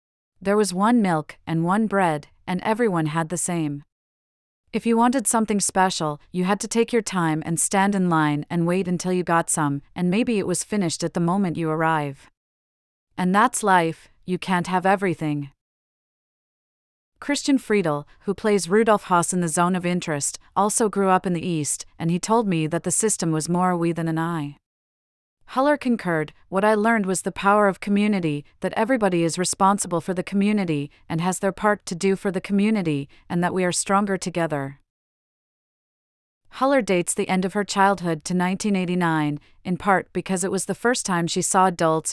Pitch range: 165-200 Hz